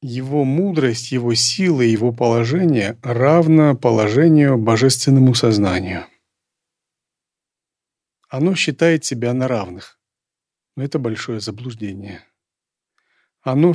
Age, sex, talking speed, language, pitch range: 40-59, male, 90 wpm, Russian, 120-155 Hz